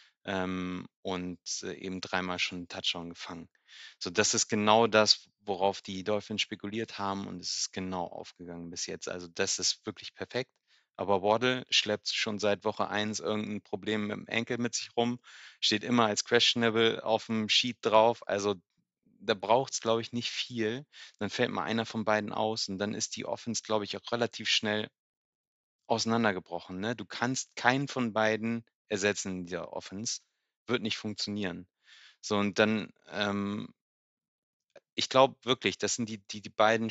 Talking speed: 170 wpm